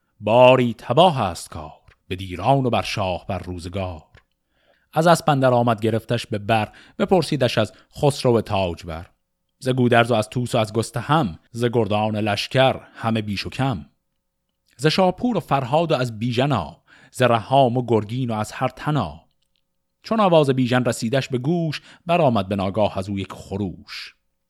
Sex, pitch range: male, 105-145 Hz